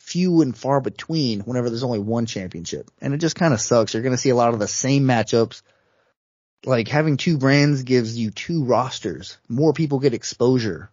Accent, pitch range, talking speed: American, 115-145 Hz, 205 wpm